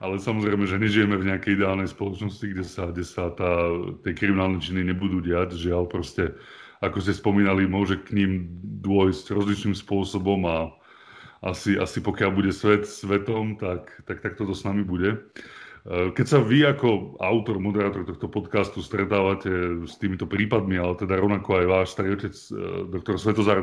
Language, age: Slovak, 30-49